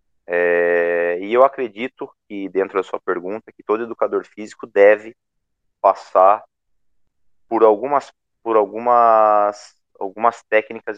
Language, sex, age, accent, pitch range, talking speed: Portuguese, male, 30-49, Brazilian, 90-105 Hz, 115 wpm